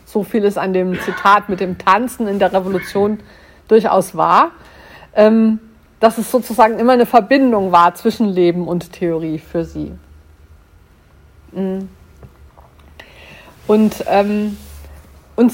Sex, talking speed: female, 110 wpm